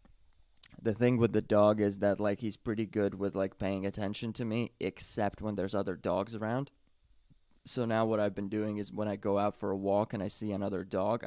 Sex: male